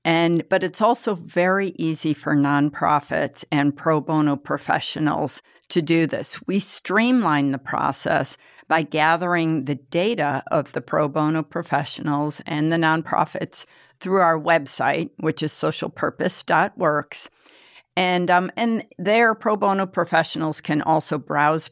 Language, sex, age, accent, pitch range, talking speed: English, female, 50-69, American, 155-185 Hz, 130 wpm